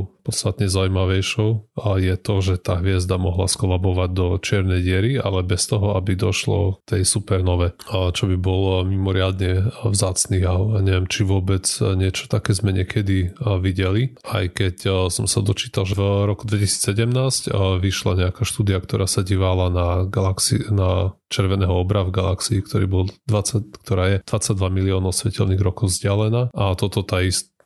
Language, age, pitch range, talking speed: Slovak, 20-39, 95-105 Hz, 150 wpm